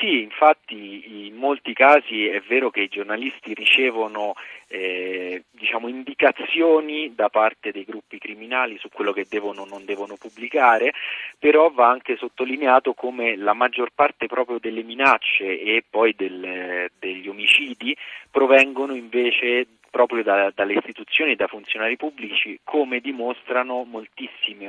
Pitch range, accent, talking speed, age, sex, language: 100-125 Hz, native, 135 wpm, 30-49, male, Italian